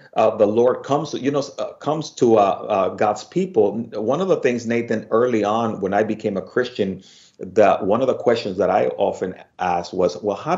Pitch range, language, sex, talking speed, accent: 105-155 Hz, English, male, 210 wpm, American